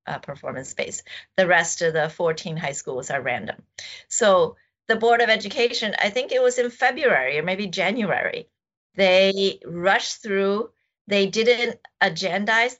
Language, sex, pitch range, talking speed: English, female, 180-235 Hz, 150 wpm